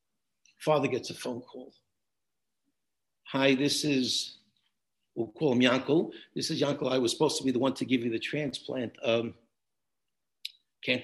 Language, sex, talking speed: English, male, 160 wpm